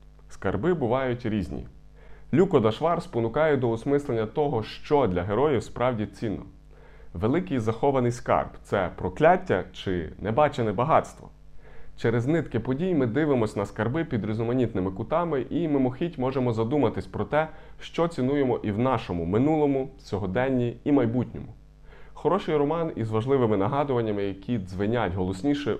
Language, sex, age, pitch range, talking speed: Ukrainian, male, 30-49, 95-135 Hz, 130 wpm